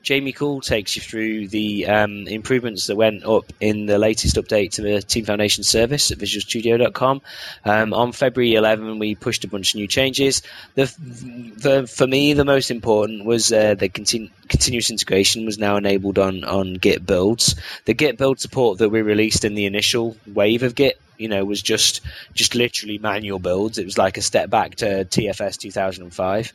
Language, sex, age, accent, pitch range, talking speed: English, male, 20-39, British, 100-125 Hz, 185 wpm